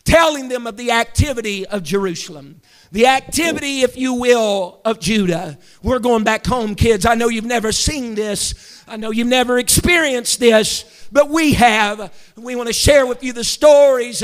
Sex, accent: male, American